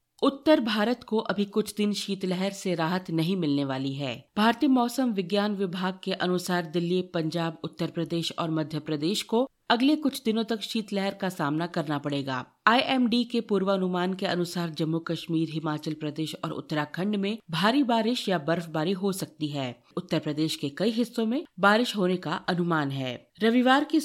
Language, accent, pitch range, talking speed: Hindi, native, 165-215 Hz, 170 wpm